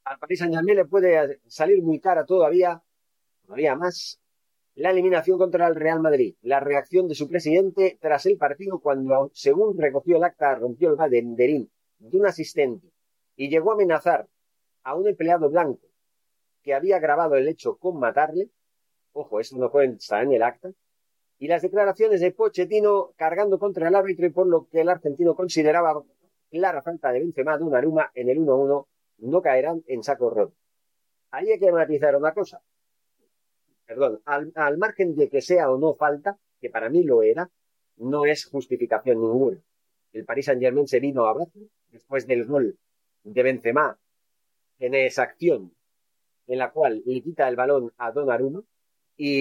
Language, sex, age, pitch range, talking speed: Spanish, male, 40-59, 140-190 Hz, 170 wpm